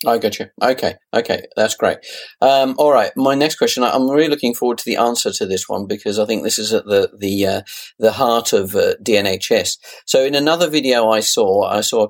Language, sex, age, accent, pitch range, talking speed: English, male, 40-59, British, 105-130 Hz, 235 wpm